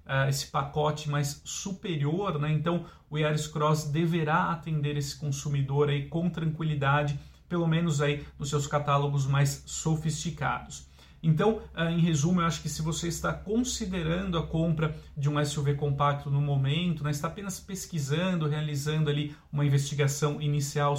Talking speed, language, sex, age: 150 wpm, Portuguese, male, 40-59